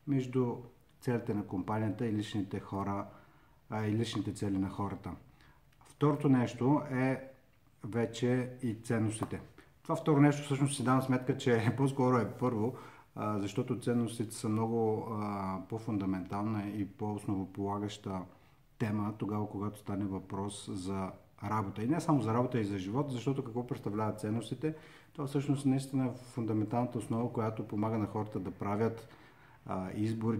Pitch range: 100-125 Hz